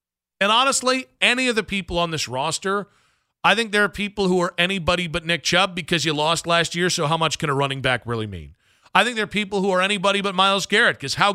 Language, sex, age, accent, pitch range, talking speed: English, male, 40-59, American, 130-190 Hz, 250 wpm